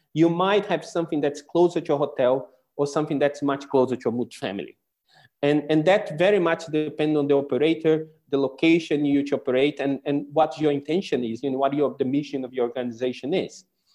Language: English